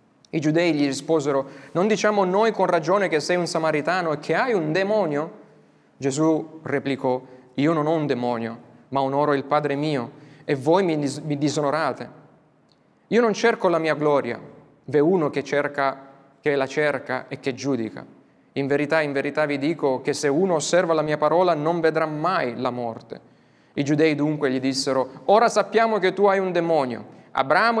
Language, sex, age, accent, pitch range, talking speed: Italian, male, 30-49, native, 135-185 Hz, 175 wpm